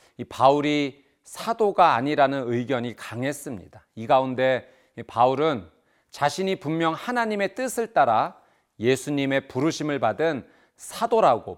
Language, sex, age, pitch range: Korean, male, 40-59, 120-175 Hz